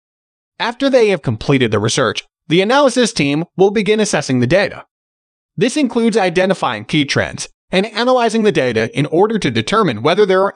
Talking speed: 170 wpm